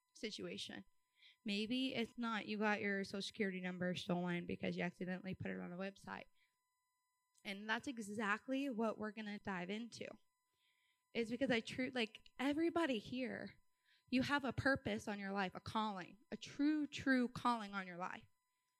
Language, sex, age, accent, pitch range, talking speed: English, female, 20-39, American, 205-280 Hz, 165 wpm